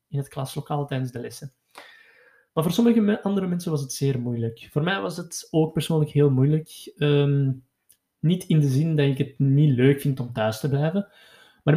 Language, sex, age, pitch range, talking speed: Dutch, male, 20-39, 130-150 Hz, 200 wpm